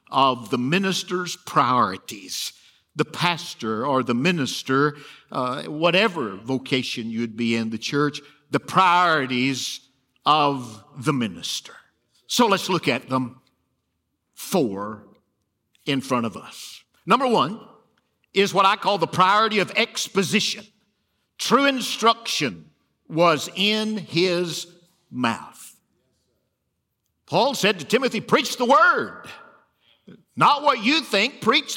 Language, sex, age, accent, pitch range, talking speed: English, male, 50-69, American, 145-240 Hz, 115 wpm